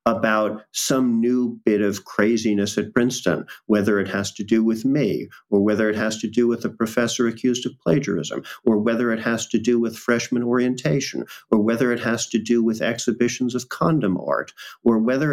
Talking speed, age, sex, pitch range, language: 190 wpm, 50-69, male, 105-120 Hz, English